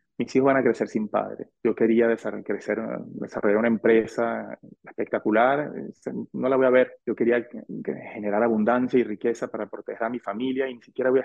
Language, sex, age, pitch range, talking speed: Spanish, male, 30-49, 115-135 Hz, 190 wpm